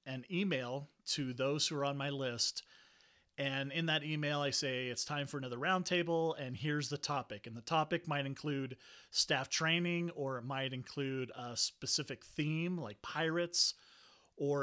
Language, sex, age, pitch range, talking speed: English, male, 30-49, 130-150 Hz, 170 wpm